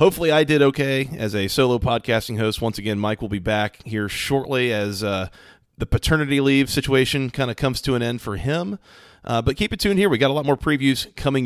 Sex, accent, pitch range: male, American, 110-140 Hz